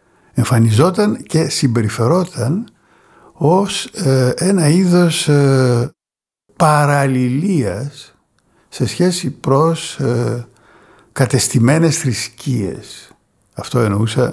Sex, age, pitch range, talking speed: male, 60-79, 110-165 Hz, 70 wpm